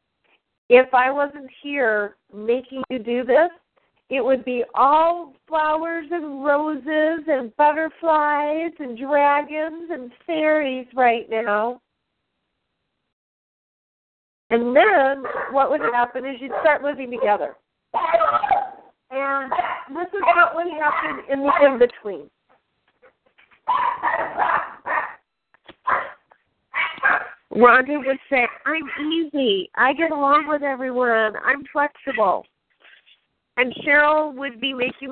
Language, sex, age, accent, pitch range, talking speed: English, female, 40-59, American, 245-300 Hz, 100 wpm